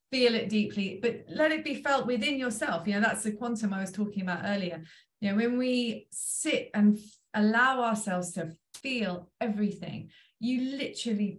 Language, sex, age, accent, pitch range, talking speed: English, female, 30-49, British, 190-235 Hz, 175 wpm